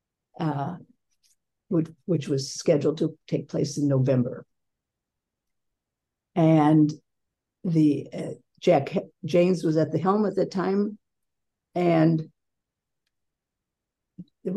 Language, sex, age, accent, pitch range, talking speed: English, female, 60-79, American, 145-170 Hz, 105 wpm